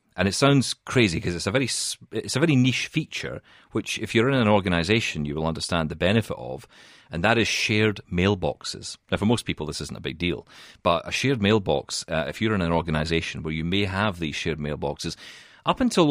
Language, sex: English, male